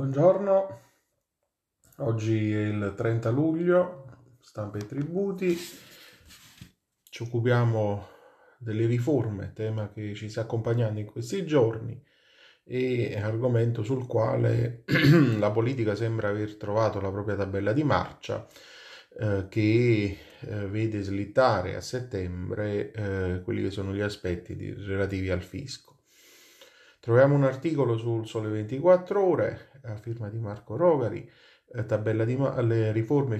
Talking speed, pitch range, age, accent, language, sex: 125 wpm, 100-120 Hz, 30-49, native, Italian, male